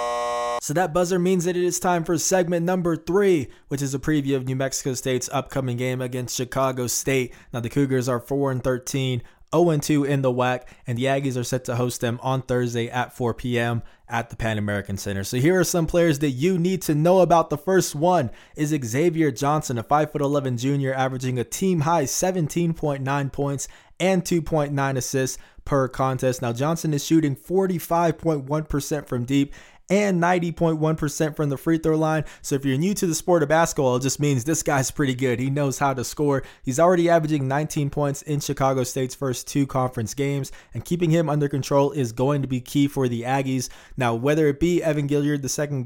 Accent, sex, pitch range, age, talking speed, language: American, male, 125-155 Hz, 20-39, 195 wpm, English